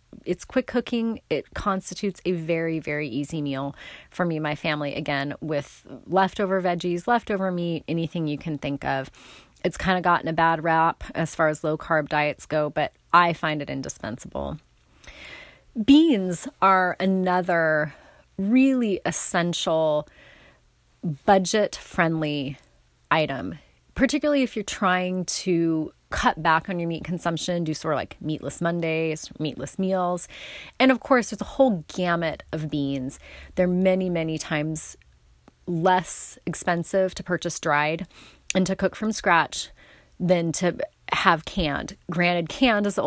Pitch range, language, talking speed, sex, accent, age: 155-190 Hz, English, 140 wpm, female, American, 30-49